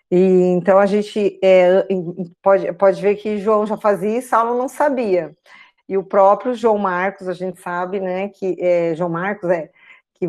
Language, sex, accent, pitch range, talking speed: Portuguese, female, Brazilian, 185-215 Hz, 170 wpm